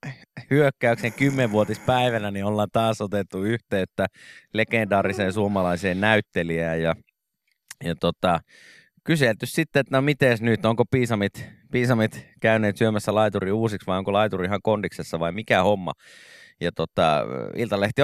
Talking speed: 125 wpm